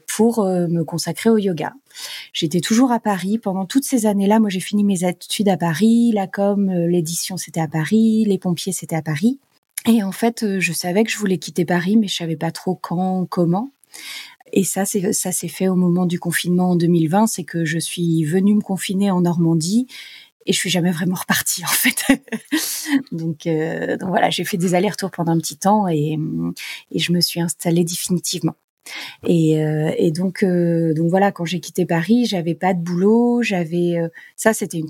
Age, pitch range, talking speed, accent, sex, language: 30-49, 165-200 Hz, 200 wpm, French, female, French